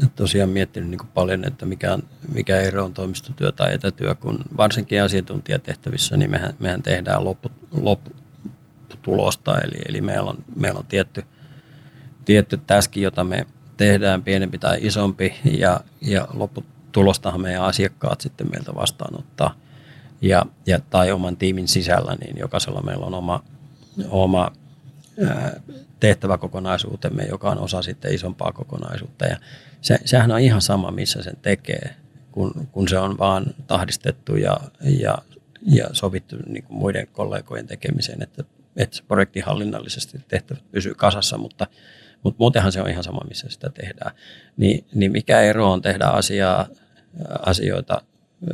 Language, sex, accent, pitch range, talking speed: Finnish, male, native, 95-145 Hz, 140 wpm